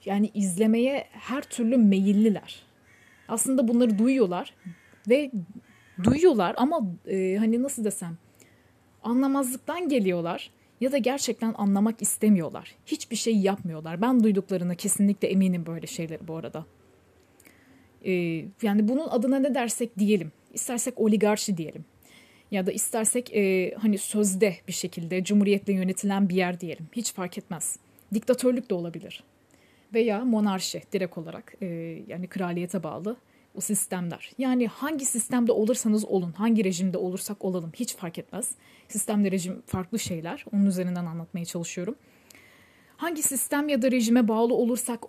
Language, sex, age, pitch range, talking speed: Turkish, female, 30-49, 185-240 Hz, 130 wpm